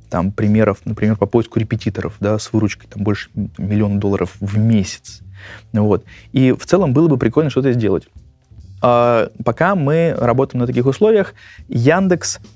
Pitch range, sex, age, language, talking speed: 115-140 Hz, male, 20-39, Russian, 155 wpm